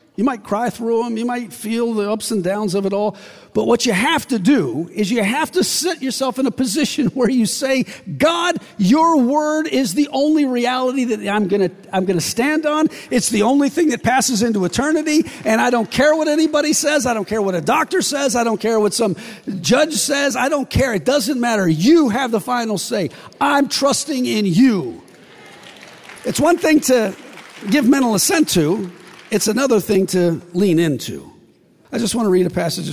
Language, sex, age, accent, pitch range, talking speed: English, male, 50-69, American, 160-255 Hz, 200 wpm